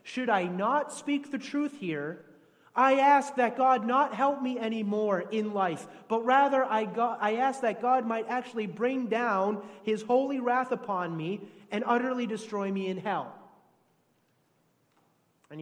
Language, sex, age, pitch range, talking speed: English, male, 30-49, 160-230 Hz, 160 wpm